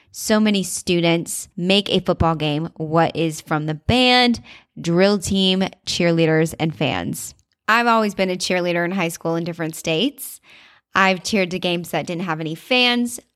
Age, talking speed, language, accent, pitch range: 20-39, 165 wpm, English, American, 170-220 Hz